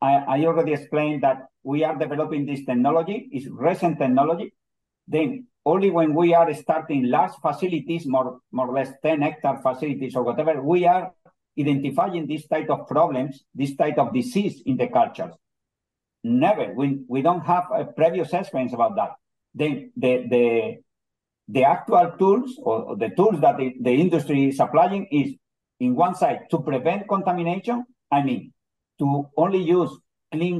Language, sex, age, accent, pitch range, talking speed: English, male, 50-69, Spanish, 135-180 Hz, 160 wpm